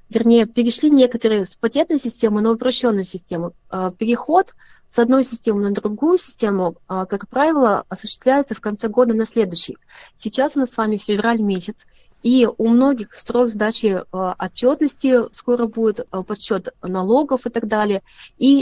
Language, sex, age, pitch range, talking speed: Russian, female, 20-39, 205-250 Hz, 145 wpm